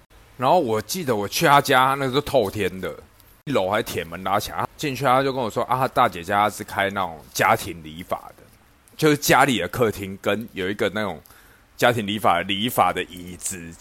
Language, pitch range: Chinese, 90-115 Hz